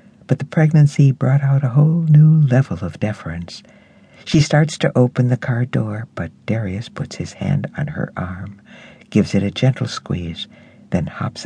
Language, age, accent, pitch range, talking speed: English, 60-79, American, 105-140 Hz, 175 wpm